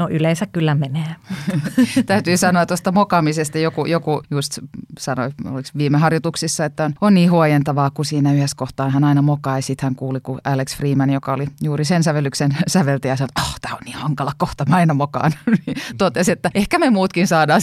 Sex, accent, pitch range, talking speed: female, native, 150-185 Hz, 190 wpm